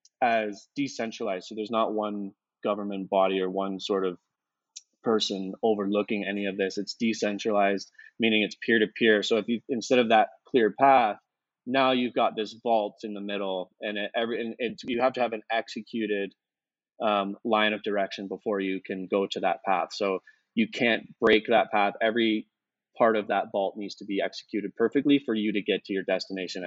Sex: male